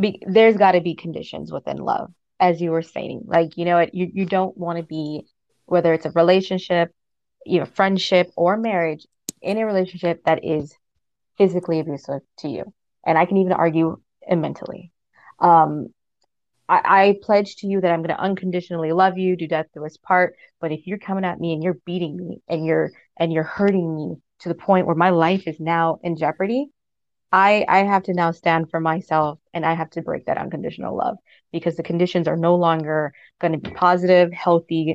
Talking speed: 205 wpm